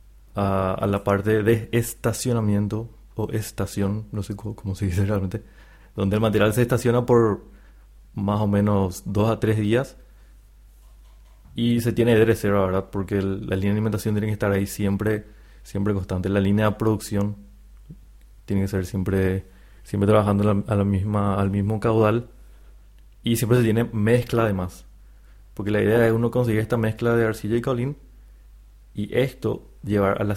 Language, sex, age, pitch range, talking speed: Spanish, male, 20-39, 100-110 Hz, 175 wpm